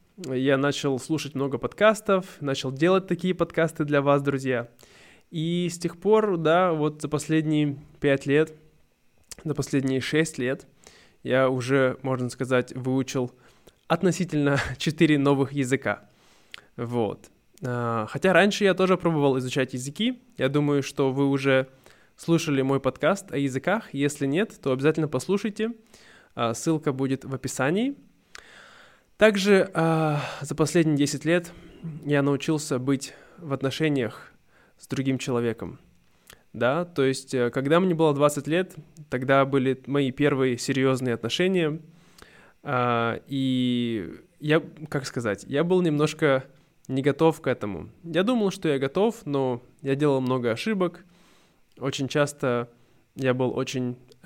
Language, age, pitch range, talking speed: Russian, 20-39, 130-165 Hz, 130 wpm